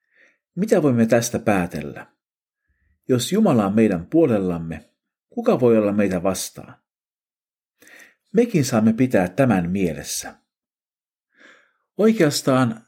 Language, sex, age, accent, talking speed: Finnish, male, 50-69, native, 95 wpm